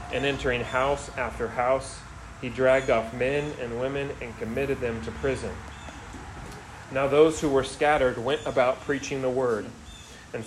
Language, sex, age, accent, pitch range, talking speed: English, male, 40-59, American, 115-135 Hz, 155 wpm